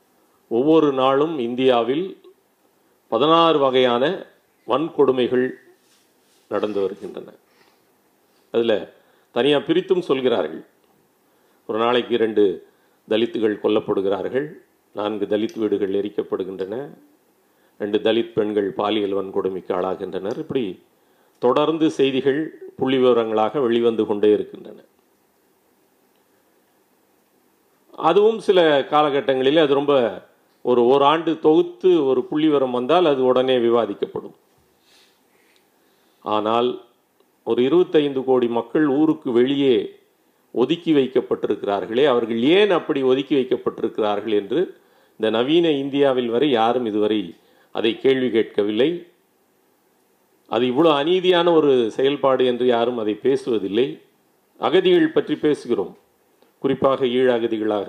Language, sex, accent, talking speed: Tamil, male, native, 90 wpm